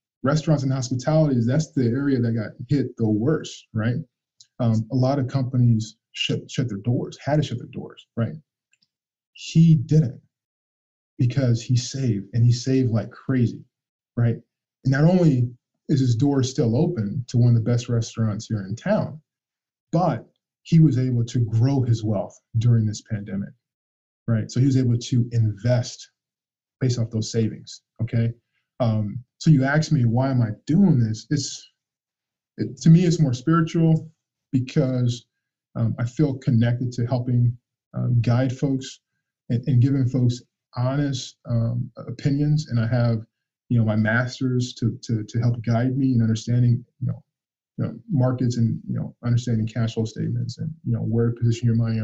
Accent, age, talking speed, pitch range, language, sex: American, 20-39, 170 wpm, 115-135 Hz, English, male